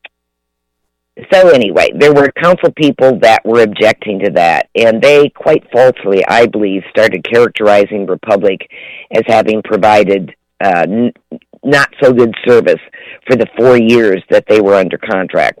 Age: 50-69